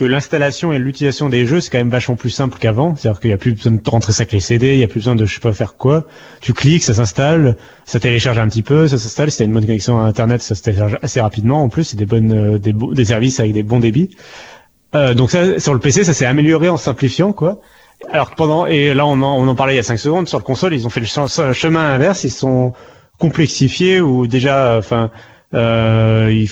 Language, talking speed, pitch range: French, 265 wpm, 115-145 Hz